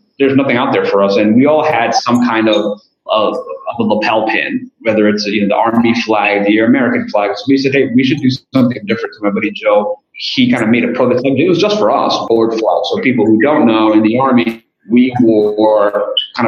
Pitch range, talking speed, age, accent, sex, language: 110-160 Hz, 230 wpm, 30-49, American, male, English